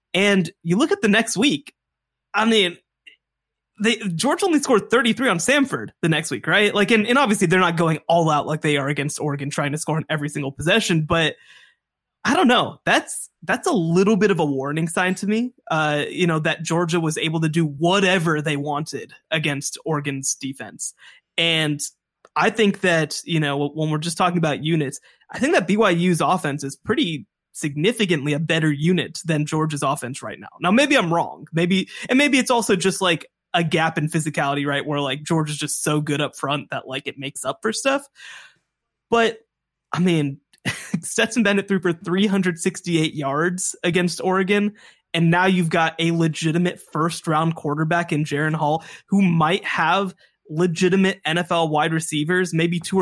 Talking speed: 185 wpm